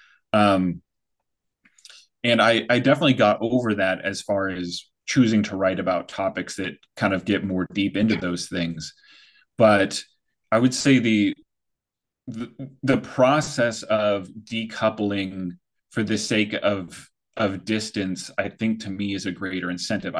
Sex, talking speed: male, 145 wpm